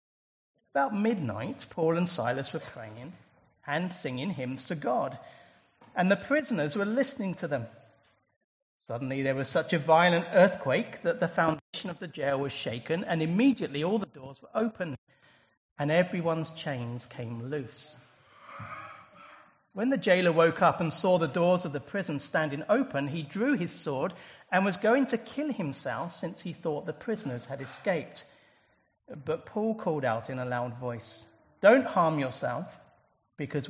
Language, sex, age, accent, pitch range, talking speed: English, male, 40-59, British, 140-185 Hz, 160 wpm